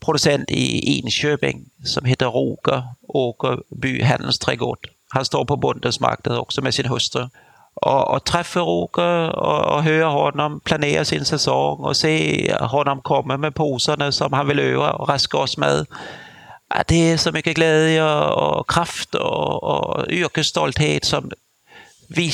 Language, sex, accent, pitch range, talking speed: Swedish, male, Danish, 115-160 Hz, 150 wpm